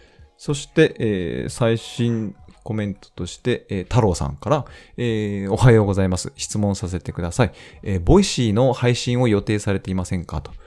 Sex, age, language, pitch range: male, 20-39, Japanese, 90-120 Hz